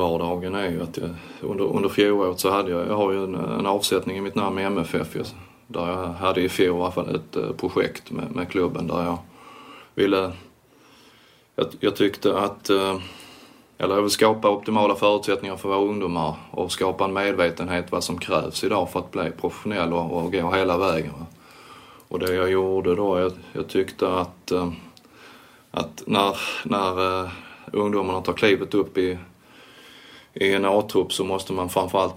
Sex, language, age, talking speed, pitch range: male, English, 20-39, 175 wpm, 85-95 Hz